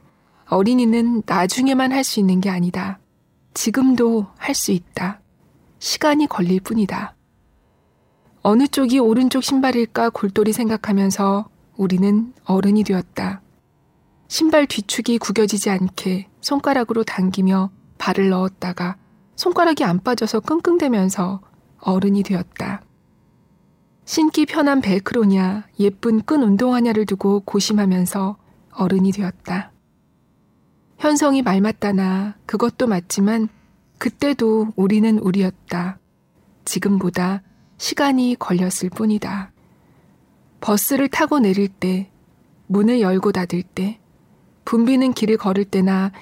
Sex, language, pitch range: female, Korean, 190-235 Hz